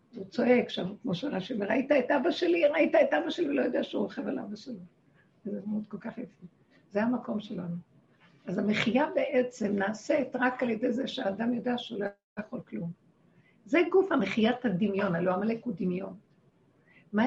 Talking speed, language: 170 wpm, Hebrew